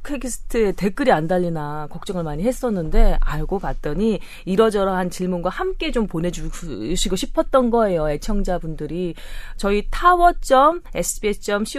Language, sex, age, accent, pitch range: Korean, female, 30-49, native, 160-235 Hz